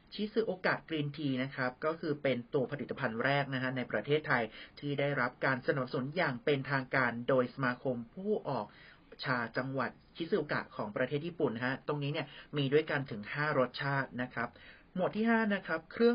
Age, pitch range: 30-49, 130-155 Hz